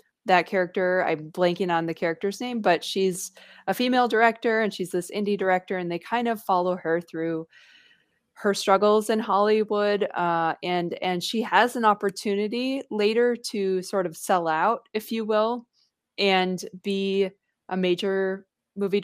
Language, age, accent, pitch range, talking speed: English, 20-39, American, 180-215 Hz, 160 wpm